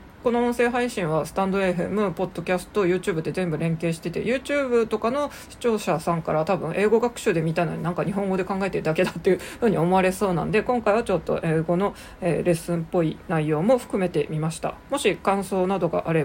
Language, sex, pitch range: Japanese, female, 165-210 Hz